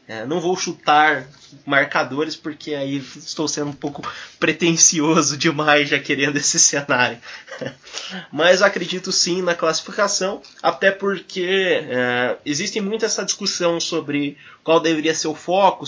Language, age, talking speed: English, 20-39, 130 wpm